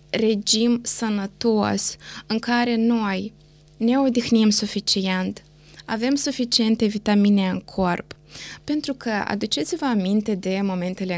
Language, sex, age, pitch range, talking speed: Romanian, female, 20-39, 195-255 Hz, 100 wpm